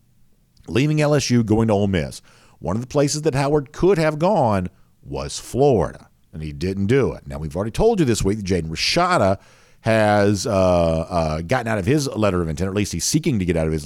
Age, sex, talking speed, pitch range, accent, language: 50-69, male, 220 wpm, 85-130 Hz, American, English